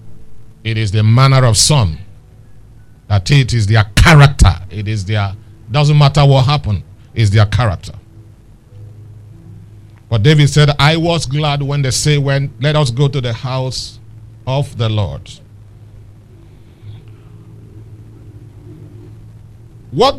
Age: 50-69